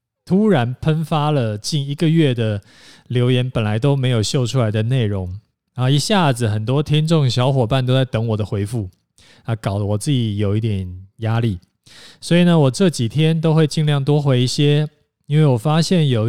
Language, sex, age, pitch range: Chinese, male, 20-39, 115-145 Hz